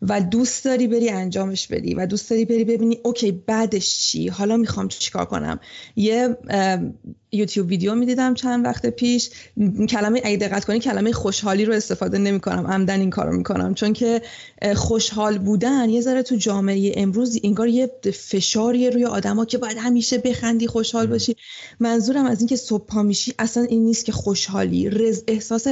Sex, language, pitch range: female, Persian, 195-230 Hz